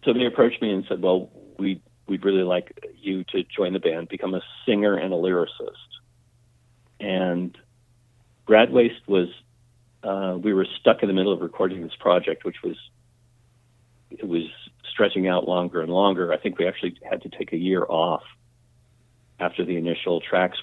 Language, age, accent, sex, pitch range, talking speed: English, 50-69, American, male, 90-120 Hz, 175 wpm